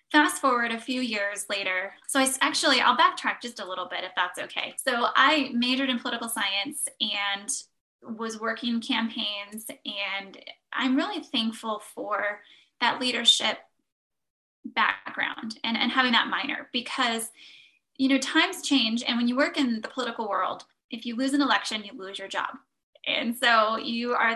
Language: English